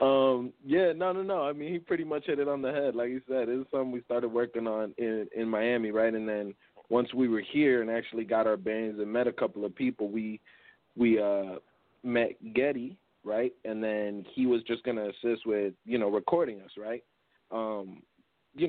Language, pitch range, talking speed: English, 105-125 Hz, 210 wpm